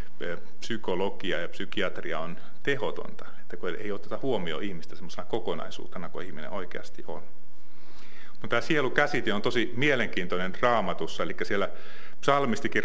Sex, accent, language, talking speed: male, native, Finnish, 125 wpm